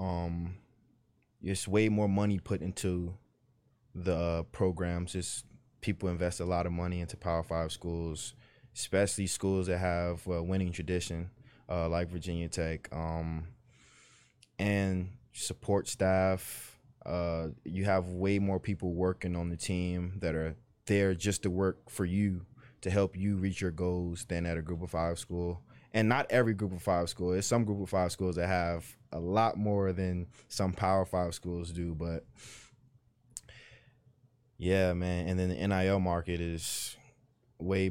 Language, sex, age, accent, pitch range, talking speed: English, male, 20-39, American, 90-105 Hz, 160 wpm